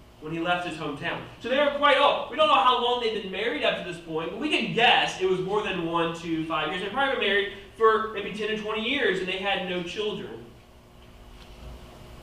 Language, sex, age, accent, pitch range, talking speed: English, male, 20-39, American, 160-235 Hz, 245 wpm